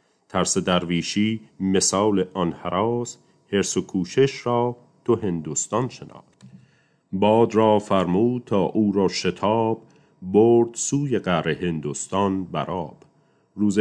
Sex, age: male, 40-59